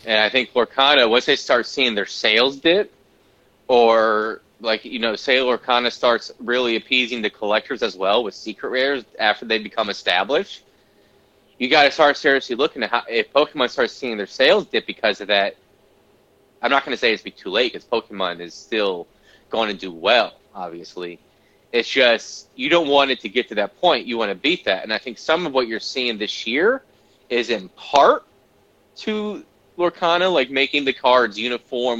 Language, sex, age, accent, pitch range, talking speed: English, male, 30-49, American, 110-140 Hz, 195 wpm